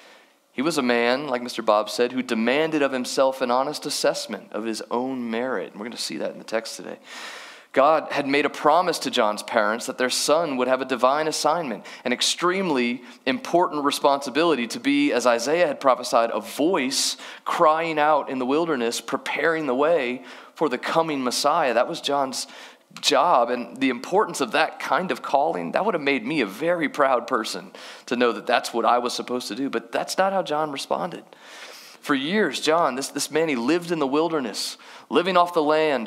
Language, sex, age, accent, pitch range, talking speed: English, male, 30-49, American, 125-160 Hz, 200 wpm